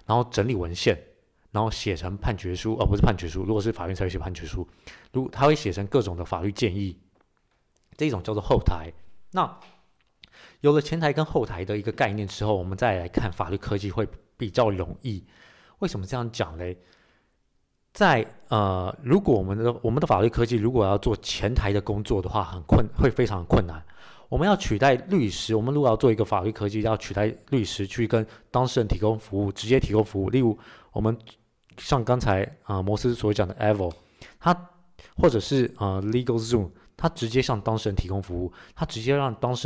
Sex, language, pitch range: male, Chinese, 100-120 Hz